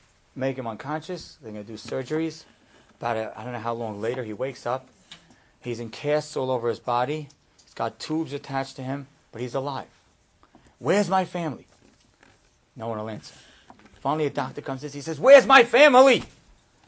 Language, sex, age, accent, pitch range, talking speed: English, male, 40-59, American, 135-185 Hz, 180 wpm